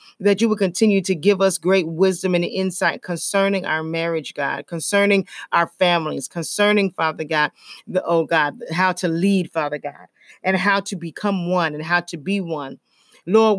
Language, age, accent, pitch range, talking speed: English, 40-59, American, 170-205 Hz, 175 wpm